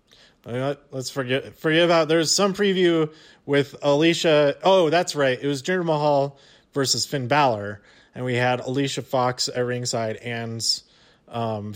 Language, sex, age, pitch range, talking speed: English, male, 30-49, 110-140 Hz, 145 wpm